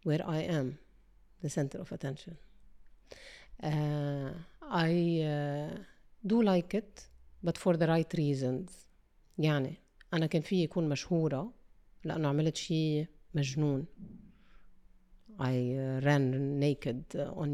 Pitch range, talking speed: 145-185 Hz, 115 wpm